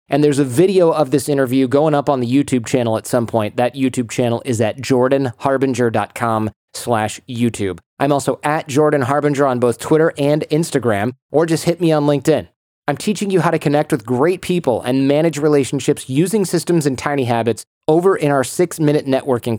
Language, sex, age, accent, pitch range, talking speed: English, male, 30-49, American, 125-155 Hz, 185 wpm